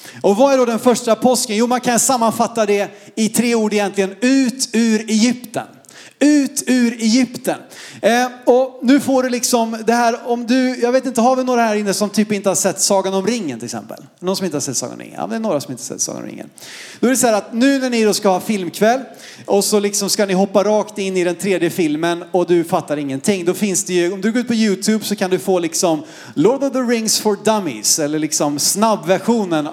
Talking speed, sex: 245 wpm, male